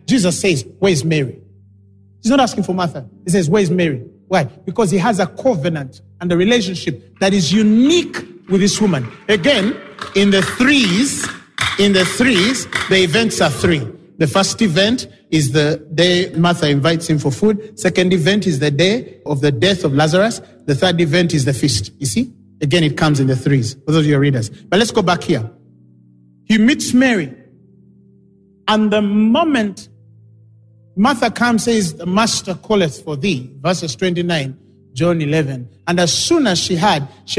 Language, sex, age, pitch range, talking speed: English, male, 40-59, 150-200 Hz, 180 wpm